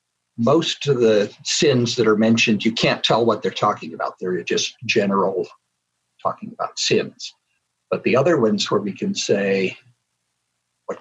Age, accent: 60-79, American